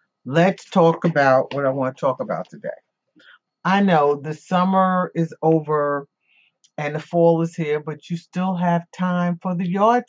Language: English